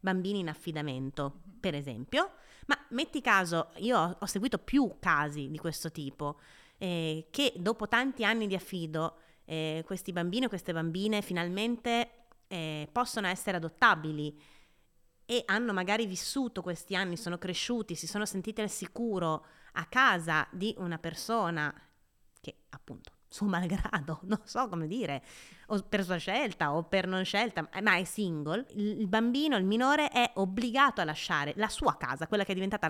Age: 30-49